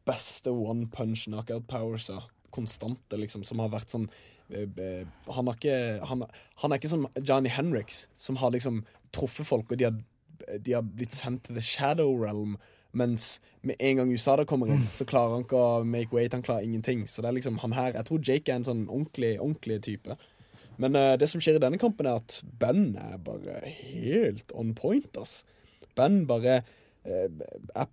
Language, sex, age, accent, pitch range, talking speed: English, male, 20-39, Swedish, 110-130 Hz, 205 wpm